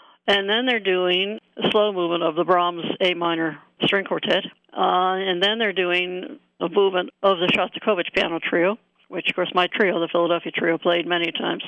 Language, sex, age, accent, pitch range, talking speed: English, female, 60-79, American, 175-200 Hz, 190 wpm